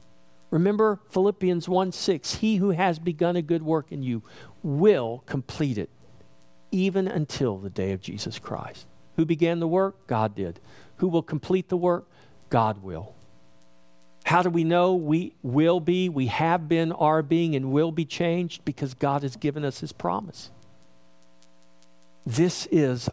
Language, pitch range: English, 115-175 Hz